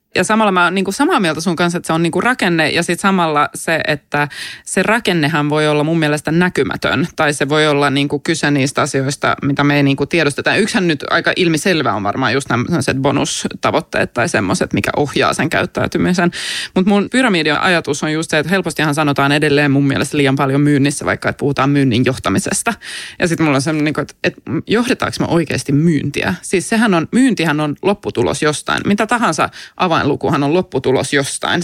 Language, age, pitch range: English, 20-39, 145-180 Hz